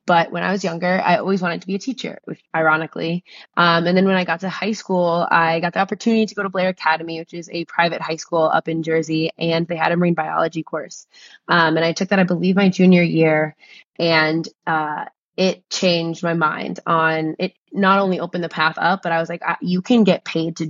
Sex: female